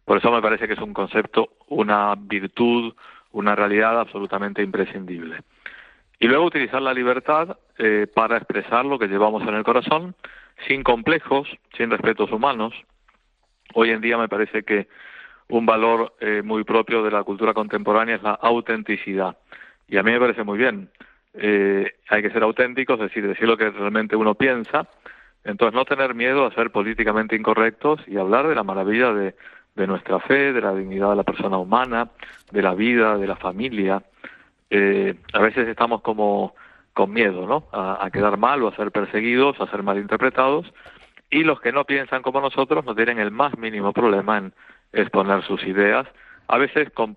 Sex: male